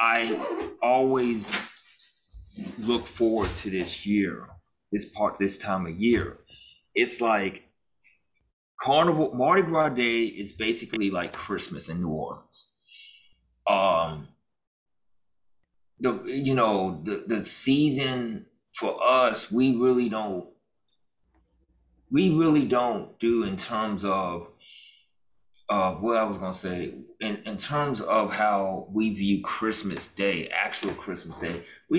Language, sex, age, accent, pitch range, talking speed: English, male, 30-49, American, 100-120 Hz, 120 wpm